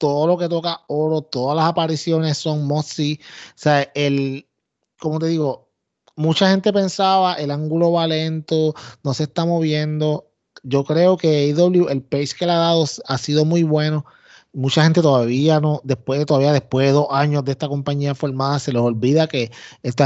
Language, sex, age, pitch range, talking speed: Spanish, male, 30-49, 135-165 Hz, 180 wpm